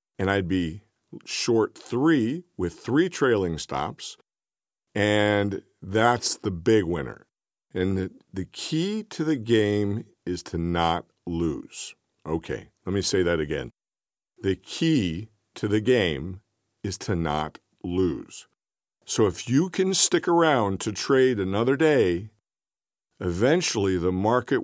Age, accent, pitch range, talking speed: 50-69, American, 90-120 Hz, 130 wpm